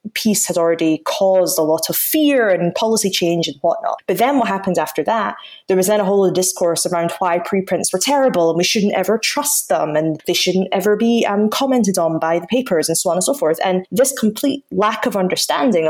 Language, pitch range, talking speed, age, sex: English, 165-195 Hz, 225 wpm, 20-39, female